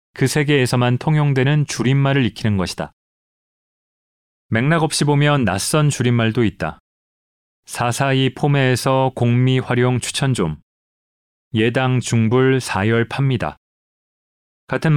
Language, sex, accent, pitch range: Korean, male, native, 105-130 Hz